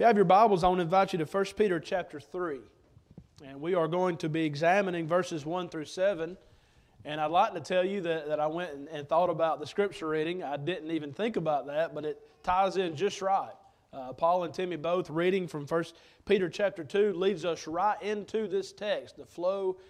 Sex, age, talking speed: male, 30-49, 225 wpm